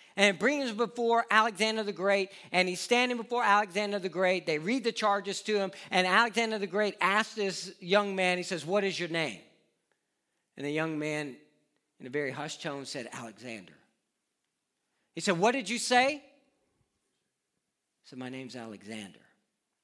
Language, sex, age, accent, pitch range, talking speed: English, male, 50-69, American, 160-255 Hz, 170 wpm